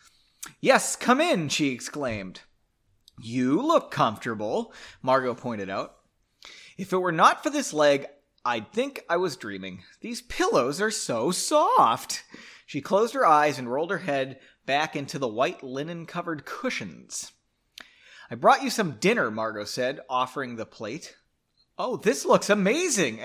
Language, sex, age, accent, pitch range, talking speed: English, male, 30-49, American, 125-210 Hz, 145 wpm